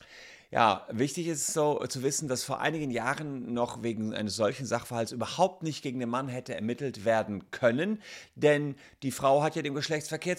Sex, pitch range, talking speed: male, 110-145 Hz, 180 wpm